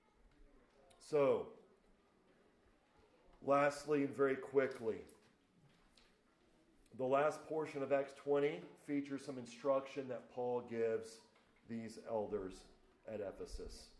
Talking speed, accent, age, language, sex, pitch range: 90 wpm, American, 40-59, English, male, 130-150 Hz